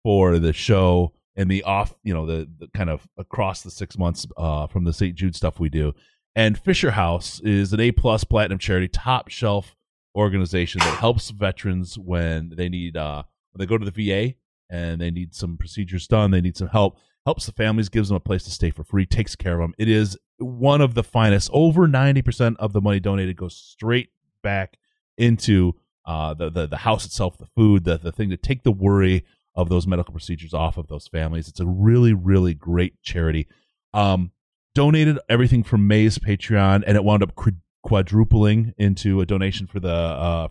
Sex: male